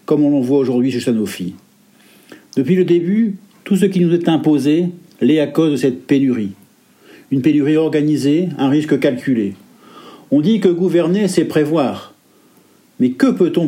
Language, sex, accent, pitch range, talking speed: French, male, French, 145-185 Hz, 160 wpm